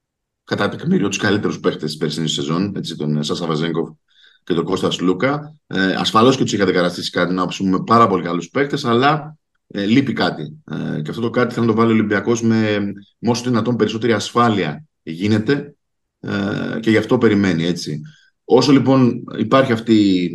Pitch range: 85-120 Hz